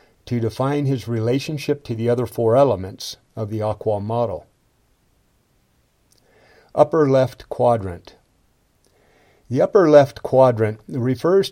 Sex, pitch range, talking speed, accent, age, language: male, 110-135 Hz, 110 wpm, American, 50-69, English